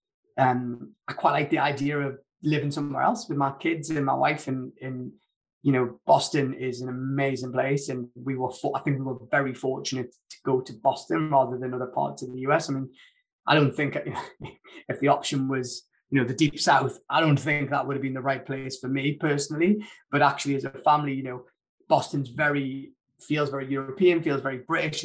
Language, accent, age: English, British, 20-39